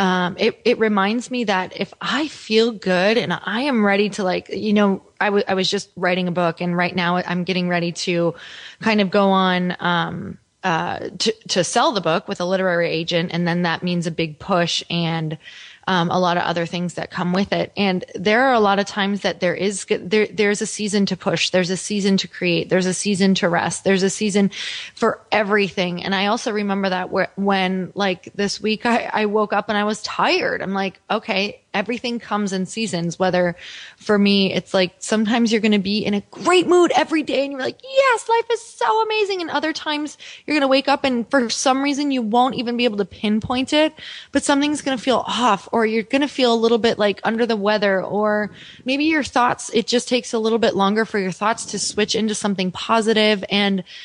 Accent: American